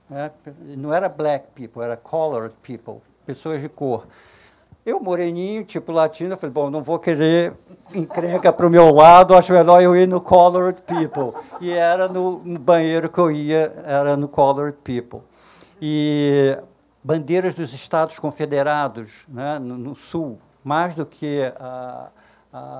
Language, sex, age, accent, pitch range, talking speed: Portuguese, male, 60-79, Brazilian, 135-165 Hz, 140 wpm